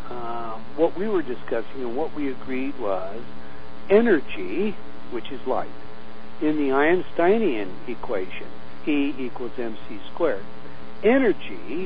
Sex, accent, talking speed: male, American, 115 wpm